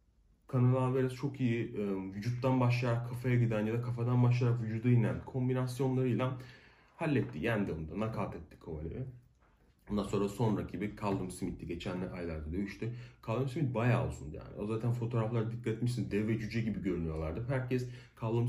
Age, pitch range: 40-59, 110-130 Hz